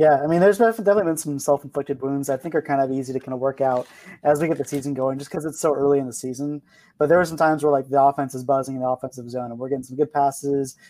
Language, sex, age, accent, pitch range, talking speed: English, male, 20-39, American, 135-155 Hz, 305 wpm